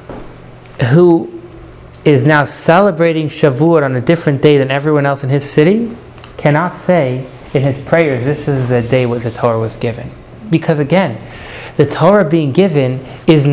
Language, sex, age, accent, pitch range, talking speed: English, male, 30-49, American, 125-155 Hz, 160 wpm